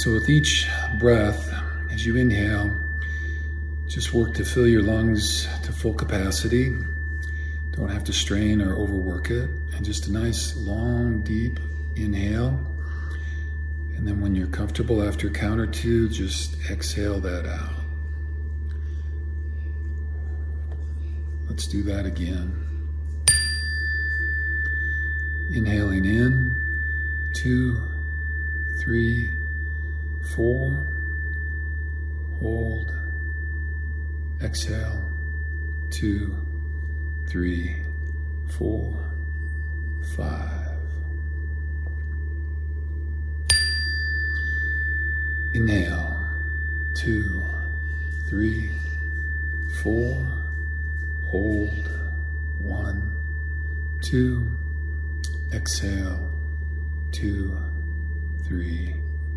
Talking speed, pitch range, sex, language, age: 70 wpm, 75-80 Hz, male, English, 50-69